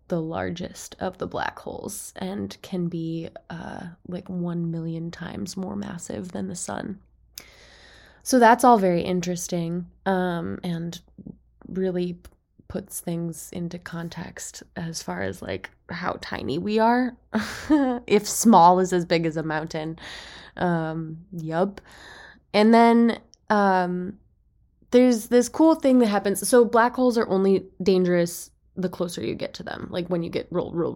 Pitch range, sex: 170-210 Hz, female